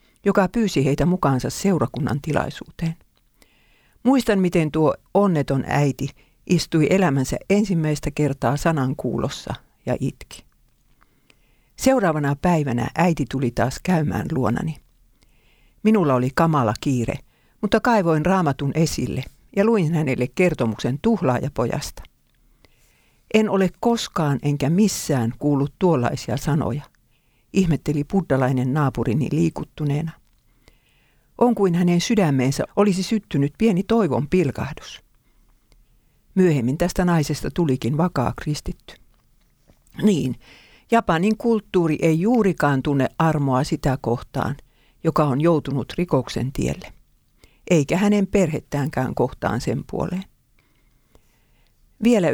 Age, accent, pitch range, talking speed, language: 50-69, native, 135-185 Hz, 100 wpm, Finnish